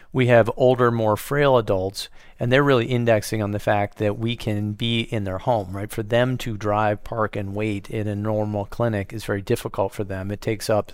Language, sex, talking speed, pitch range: English, male, 220 wpm, 100-115 Hz